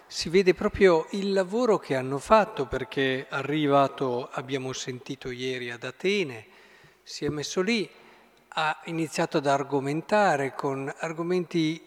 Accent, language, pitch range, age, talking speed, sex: native, Italian, 140-195 Hz, 50-69, 125 wpm, male